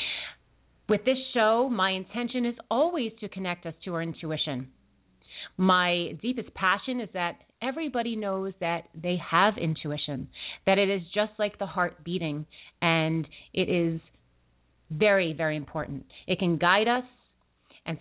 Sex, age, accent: female, 30-49, American